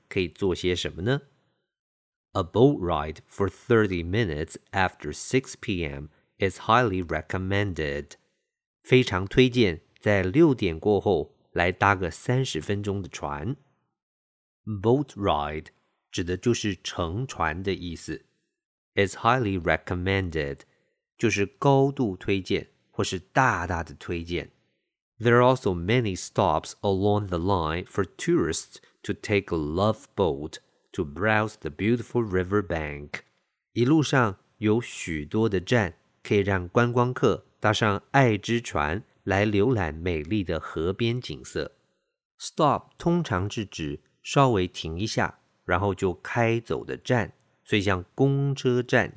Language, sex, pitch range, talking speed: English, male, 85-120 Hz, 50 wpm